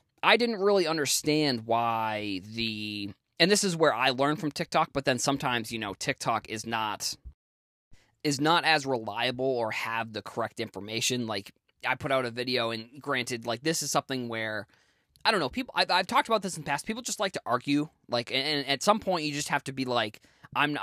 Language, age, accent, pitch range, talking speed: English, 20-39, American, 120-155 Hz, 210 wpm